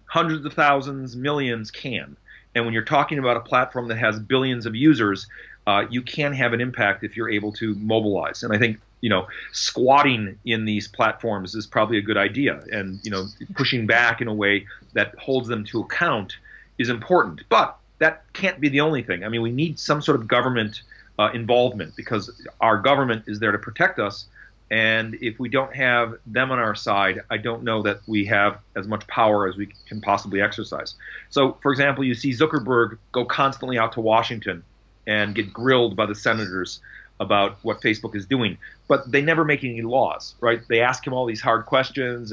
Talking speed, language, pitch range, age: 200 wpm, English, 105-130 Hz, 40-59